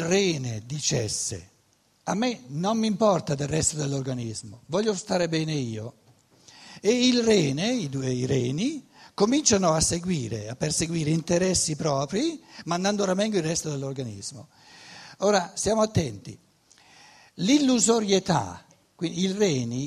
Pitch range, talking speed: 145-210 Hz, 120 wpm